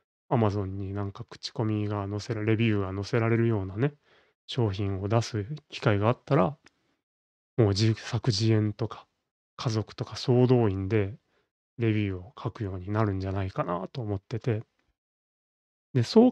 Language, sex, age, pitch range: Japanese, male, 30-49, 105-130 Hz